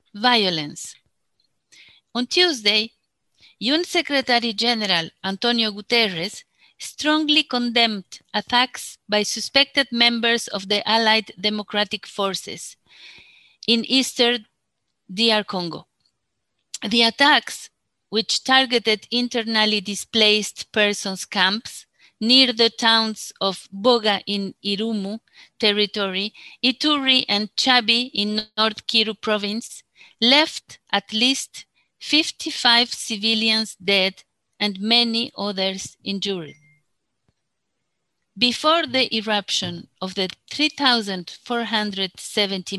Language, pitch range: English, 200-245 Hz